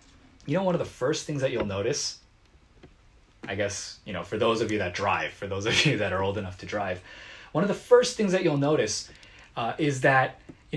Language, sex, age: Korean, male, 20-39